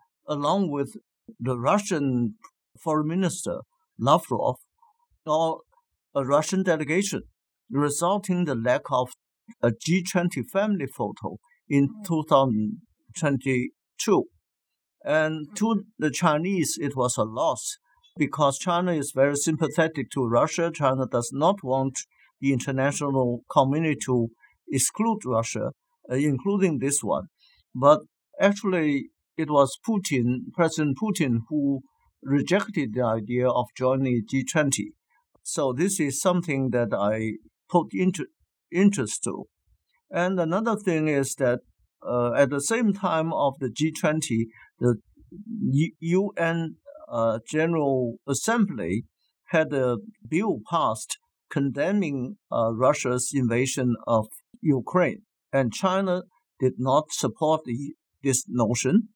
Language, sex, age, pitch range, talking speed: English, male, 50-69, 130-185 Hz, 115 wpm